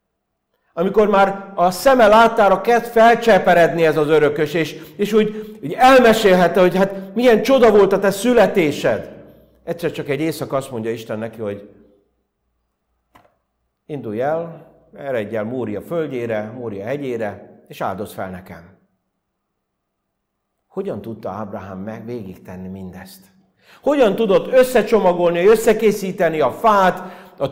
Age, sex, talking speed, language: 60-79, male, 125 wpm, Hungarian